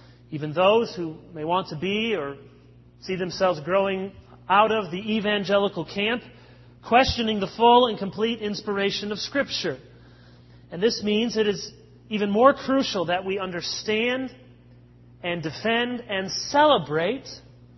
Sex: male